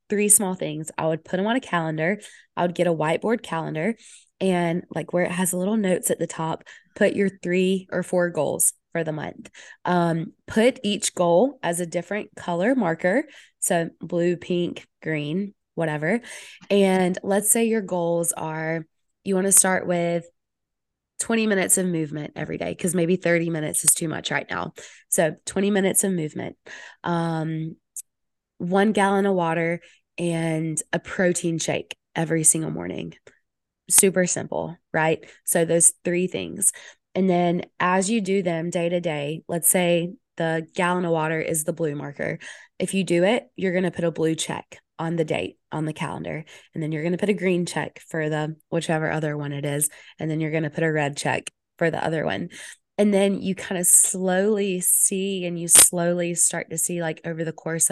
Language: English